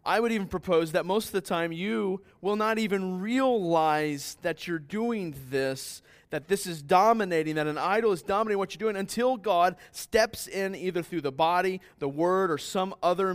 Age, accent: 30-49, American